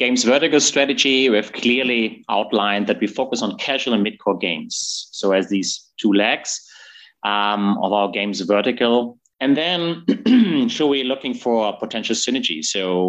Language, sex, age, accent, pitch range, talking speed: English, male, 30-49, German, 105-130 Hz, 165 wpm